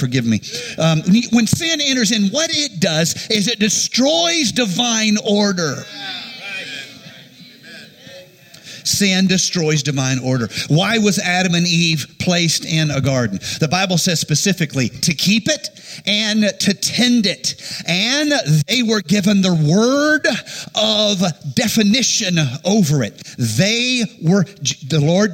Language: English